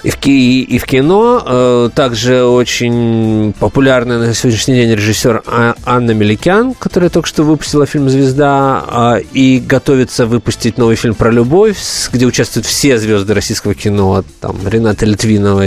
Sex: male